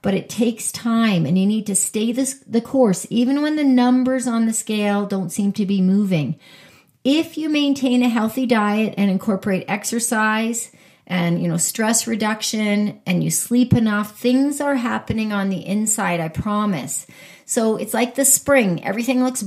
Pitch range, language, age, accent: 195-245 Hz, English, 40-59, American